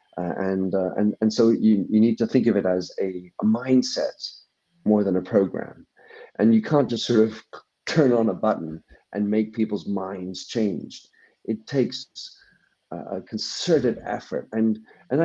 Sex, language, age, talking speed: male, English, 50-69, 170 wpm